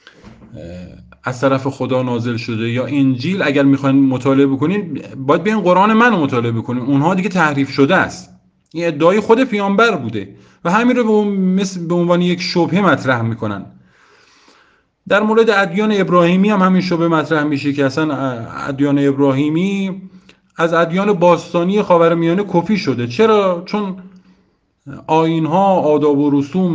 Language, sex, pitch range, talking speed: Persian, male, 135-185 Hz, 145 wpm